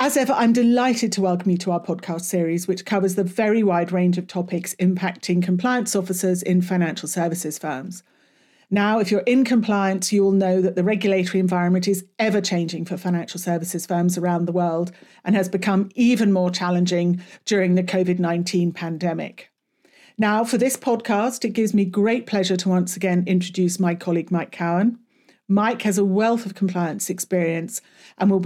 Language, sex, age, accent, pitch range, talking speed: English, female, 40-59, British, 180-210 Hz, 180 wpm